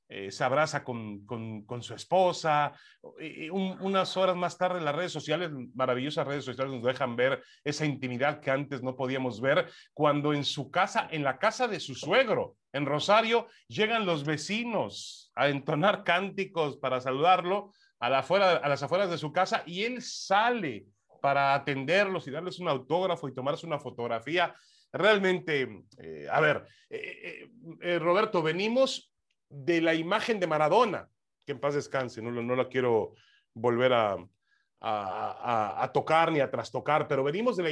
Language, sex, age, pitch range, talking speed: Spanish, male, 40-59, 145-195 Hz, 170 wpm